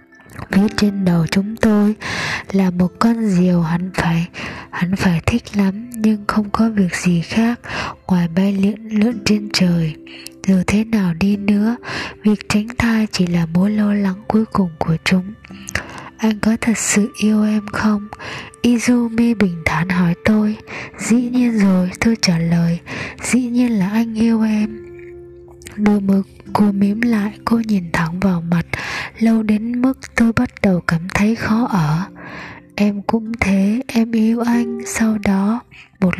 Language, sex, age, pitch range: Japanese, female, 20-39, 185-220 Hz